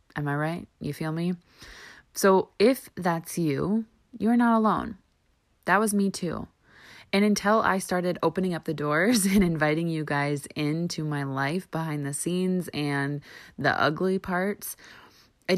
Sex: female